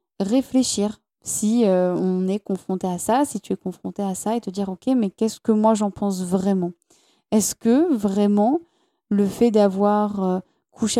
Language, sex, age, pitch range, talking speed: French, female, 20-39, 195-240 Hz, 190 wpm